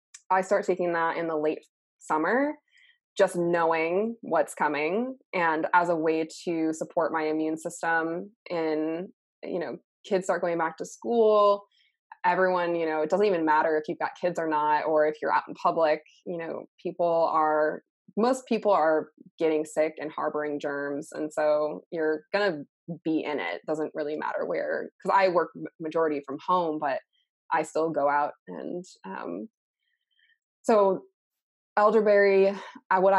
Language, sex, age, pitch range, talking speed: English, female, 20-39, 160-205 Hz, 165 wpm